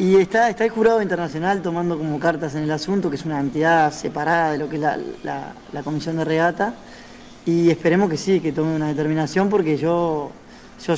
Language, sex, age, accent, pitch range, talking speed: Spanish, male, 20-39, Argentinian, 150-175 Hz, 210 wpm